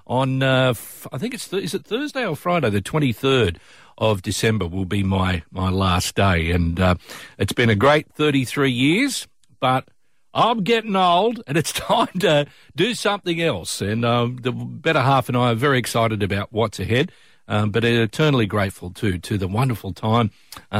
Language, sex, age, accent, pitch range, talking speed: English, male, 50-69, Australian, 105-150 Hz, 180 wpm